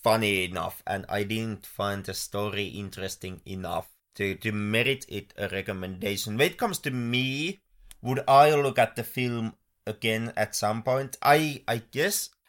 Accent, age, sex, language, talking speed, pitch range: Finnish, 30-49, male, English, 165 wpm, 110-150 Hz